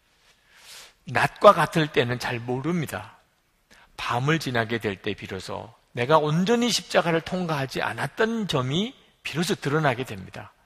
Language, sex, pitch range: Korean, male, 120-185 Hz